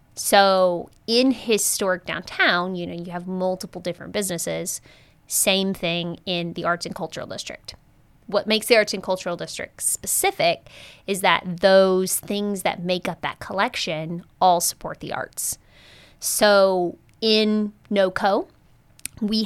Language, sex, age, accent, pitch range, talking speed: English, female, 20-39, American, 175-200 Hz, 135 wpm